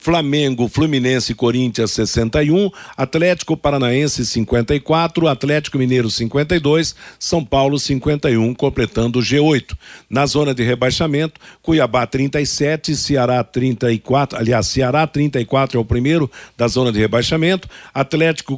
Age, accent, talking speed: 60-79, Brazilian, 115 wpm